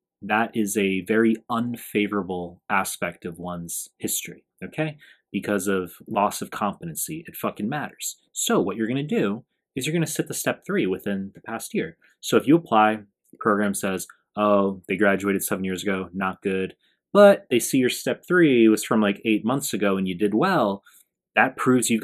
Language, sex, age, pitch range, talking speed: English, male, 20-39, 100-125 Hz, 190 wpm